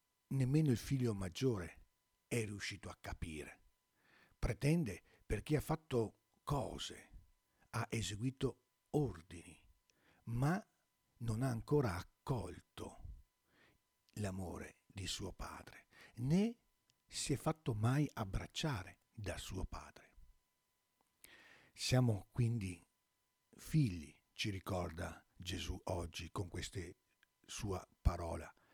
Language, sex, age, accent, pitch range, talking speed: Italian, male, 60-79, native, 85-125 Hz, 95 wpm